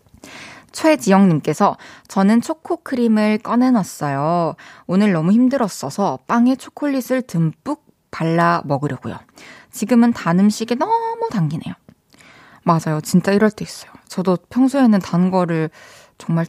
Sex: female